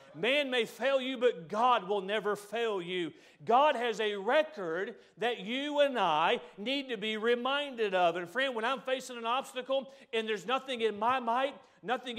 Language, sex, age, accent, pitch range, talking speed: English, male, 40-59, American, 170-255 Hz, 180 wpm